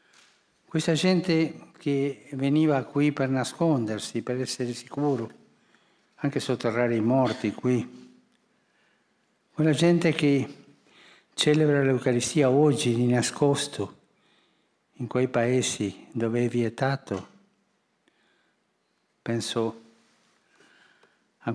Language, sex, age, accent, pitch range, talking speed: Italian, male, 60-79, native, 110-135 Hz, 85 wpm